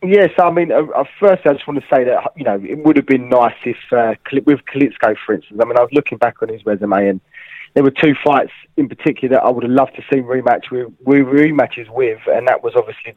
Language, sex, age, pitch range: English, male, 20-39, 125-150 Hz